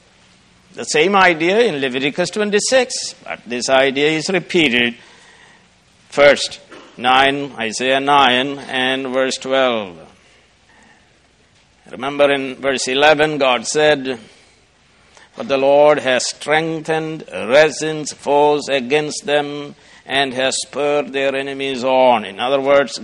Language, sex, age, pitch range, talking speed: English, male, 60-79, 130-170 Hz, 110 wpm